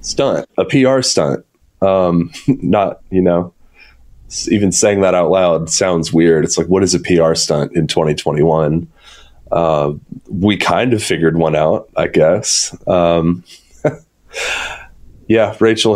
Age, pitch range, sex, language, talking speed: 20-39, 85-110 Hz, male, English, 135 wpm